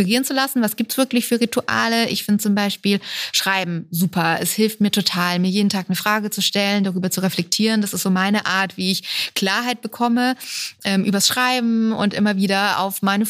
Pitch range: 190-225 Hz